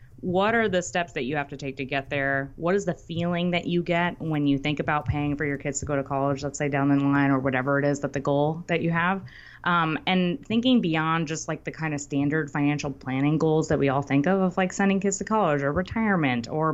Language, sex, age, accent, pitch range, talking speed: English, female, 20-39, American, 145-185 Hz, 265 wpm